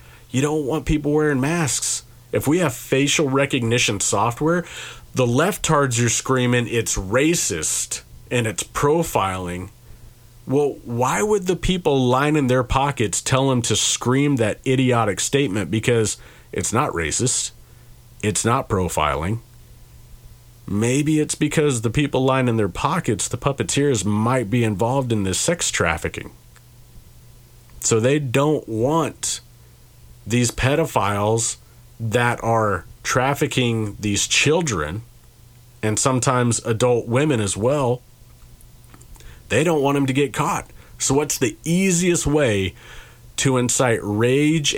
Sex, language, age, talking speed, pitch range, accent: male, English, 40-59, 125 wpm, 115-135 Hz, American